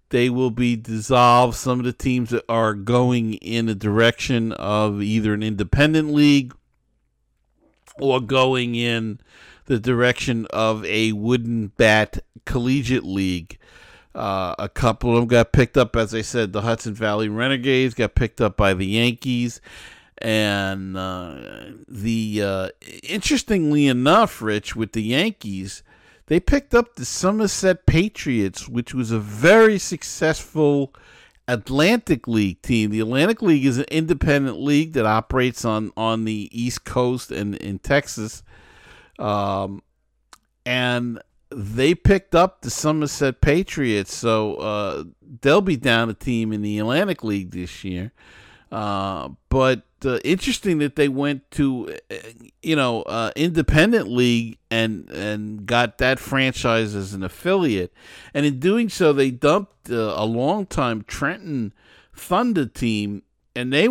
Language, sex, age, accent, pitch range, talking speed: English, male, 50-69, American, 110-140 Hz, 140 wpm